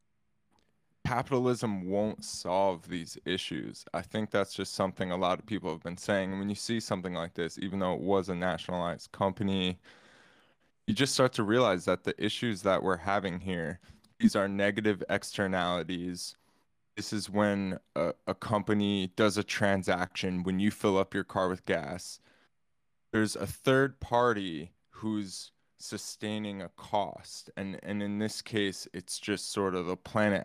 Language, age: English, 20-39